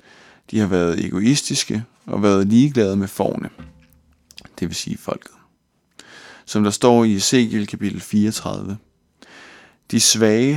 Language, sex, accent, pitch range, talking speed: Danish, male, native, 95-120 Hz, 125 wpm